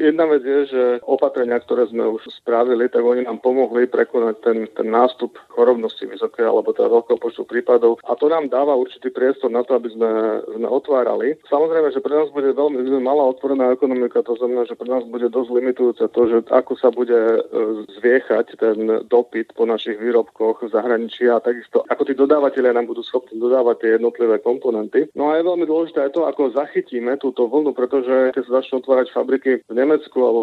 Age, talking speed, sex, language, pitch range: 40-59, 185 wpm, male, Slovak, 120-150 Hz